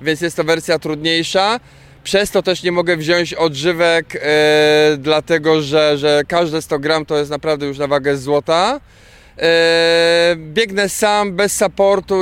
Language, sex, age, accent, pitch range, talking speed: Polish, male, 20-39, native, 150-170 Hz, 140 wpm